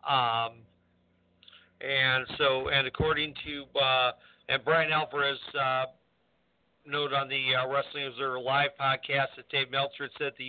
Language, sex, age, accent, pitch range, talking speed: English, male, 50-69, American, 130-150 Hz, 135 wpm